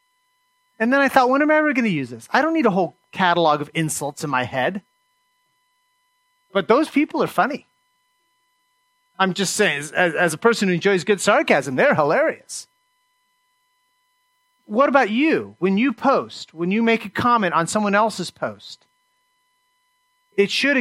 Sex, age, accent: male, 30-49, American